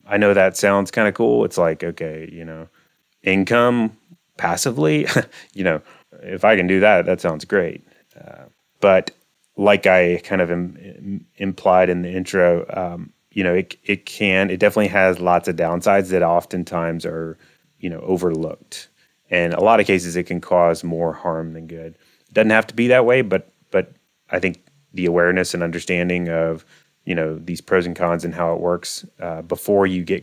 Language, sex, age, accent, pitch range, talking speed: English, male, 30-49, American, 85-95 Hz, 190 wpm